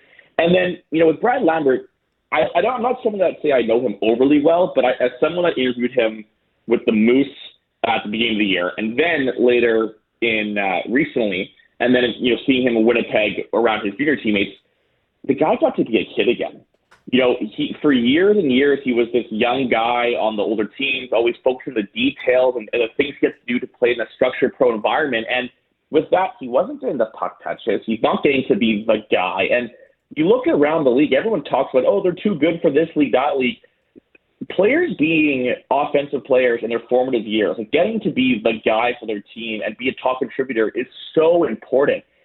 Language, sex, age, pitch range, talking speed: English, male, 30-49, 120-165 Hz, 220 wpm